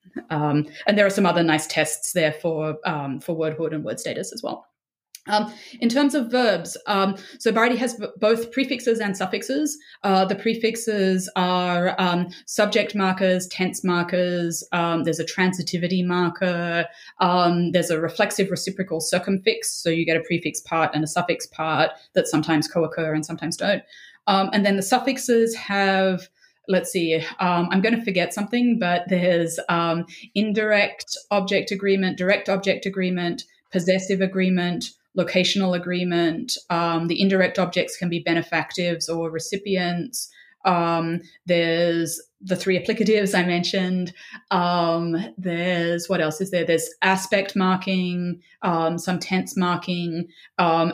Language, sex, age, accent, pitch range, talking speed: English, female, 20-39, Australian, 170-200 Hz, 145 wpm